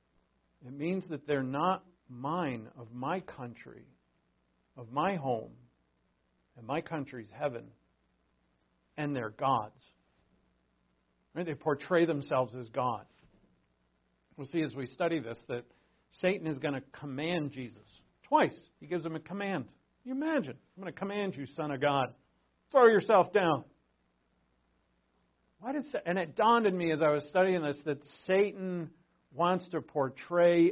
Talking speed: 145 wpm